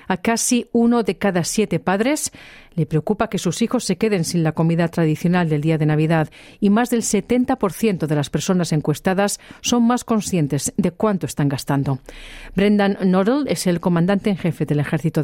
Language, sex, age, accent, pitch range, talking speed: Spanish, female, 40-59, Spanish, 155-205 Hz, 180 wpm